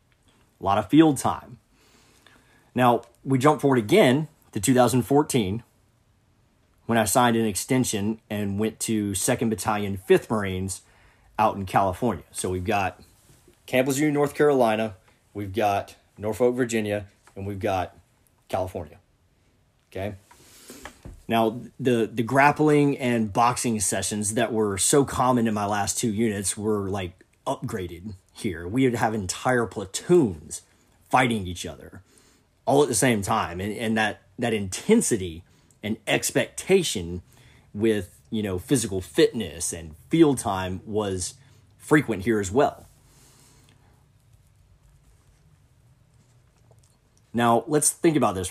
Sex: male